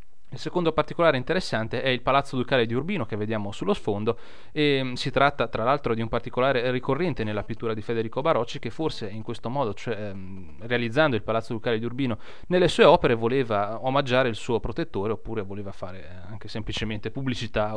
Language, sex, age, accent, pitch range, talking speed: Italian, male, 30-49, native, 110-135 Hz, 185 wpm